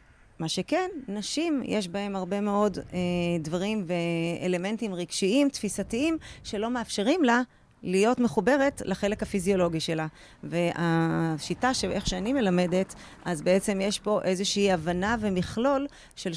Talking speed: 120 wpm